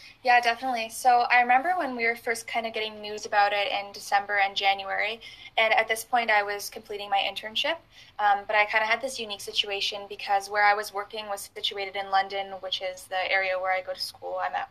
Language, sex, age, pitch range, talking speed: English, female, 10-29, 195-225 Hz, 235 wpm